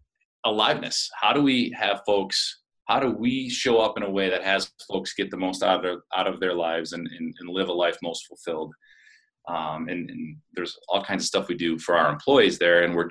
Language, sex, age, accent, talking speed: English, male, 30-49, American, 225 wpm